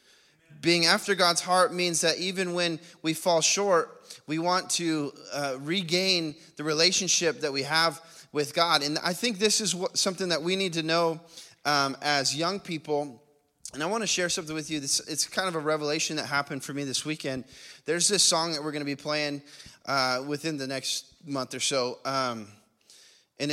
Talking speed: 195 wpm